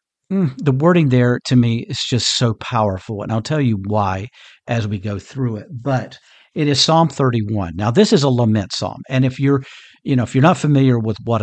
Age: 50-69